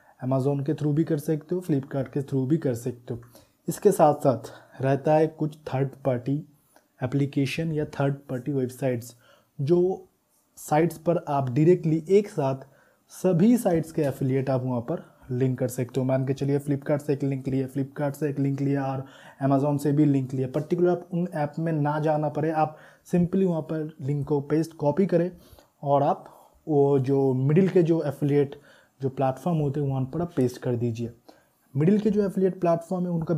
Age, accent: 20-39, native